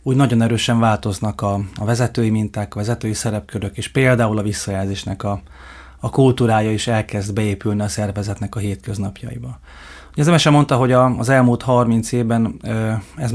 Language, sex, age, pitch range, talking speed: Hungarian, male, 30-49, 110-125 Hz, 165 wpm